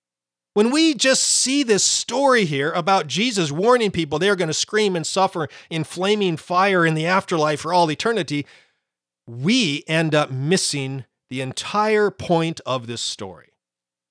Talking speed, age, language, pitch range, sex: 155 wpm, 40-59, English, 145-200 Hz, male